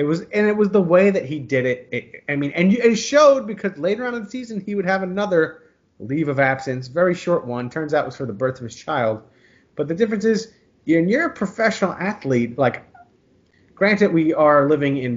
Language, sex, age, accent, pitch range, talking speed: English, male, 30-49, American, 130-200 Hz, 235 wpm